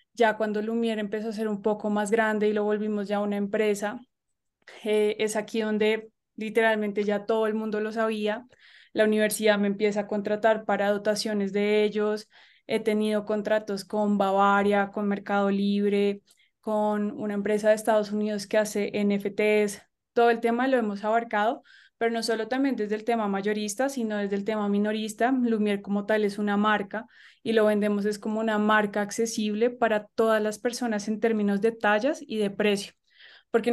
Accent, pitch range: Colombian, 210-225 Hz